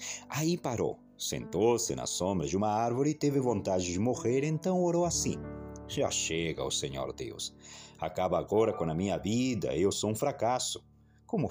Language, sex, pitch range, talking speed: Portuguese, male, 100-140 Hz, 170 wpm